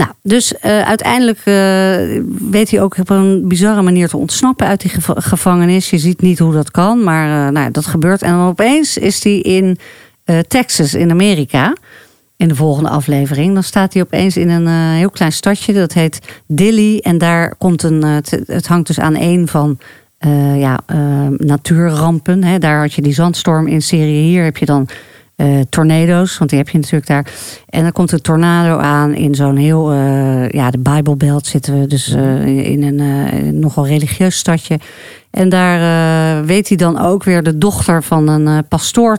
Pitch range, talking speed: 150-185 Hz, 200 wpm